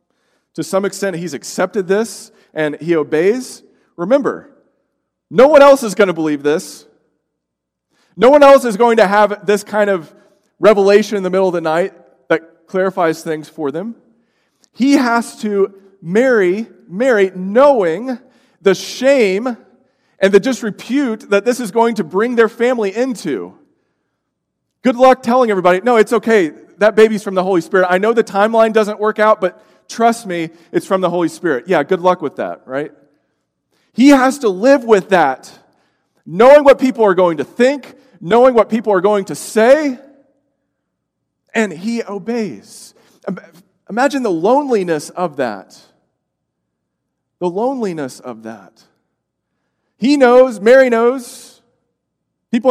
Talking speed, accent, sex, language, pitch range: 150 wpm, American, male, English, 180-250 Hz